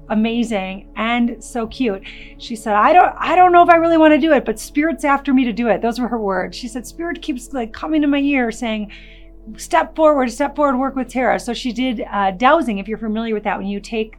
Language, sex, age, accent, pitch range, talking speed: English, female, 30-49, American, 200-275 Hz, 250 wpm